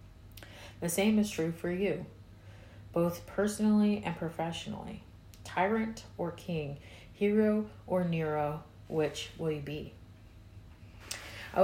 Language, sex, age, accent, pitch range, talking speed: English, female, 30-49, American, 105-170 Hz, 110 wpm